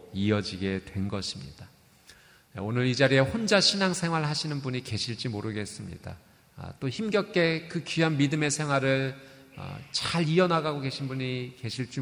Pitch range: 115-155 Hz